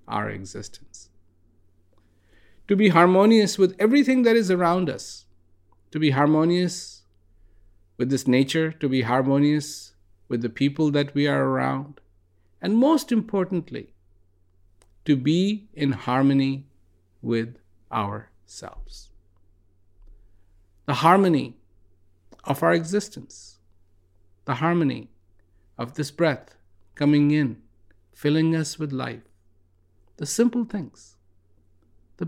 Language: English